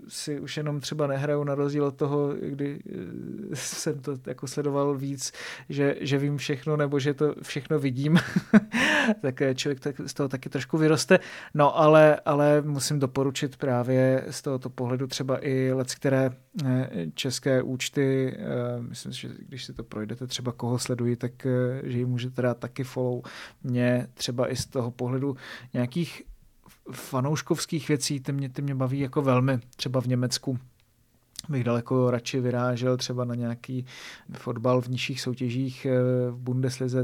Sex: male